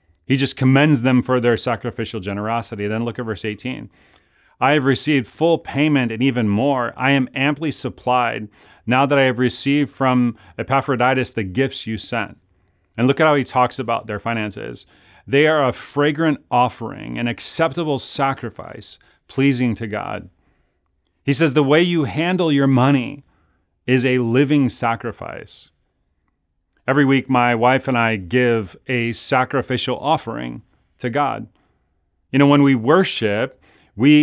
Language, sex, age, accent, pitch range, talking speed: English, male, 30-49, American, 115-140 Hz, 150 wpm